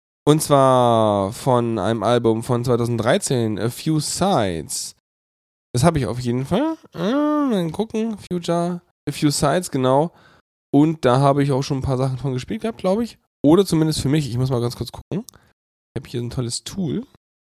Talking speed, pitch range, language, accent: 185 wpm, 115-170 Hz, German, German